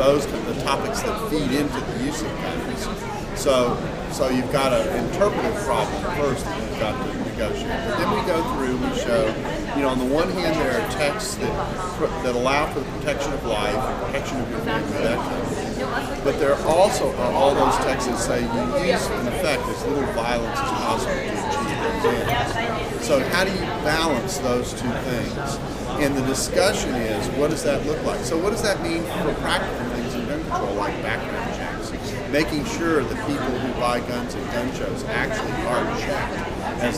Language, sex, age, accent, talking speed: English, male, 40-59, American, 185 wpm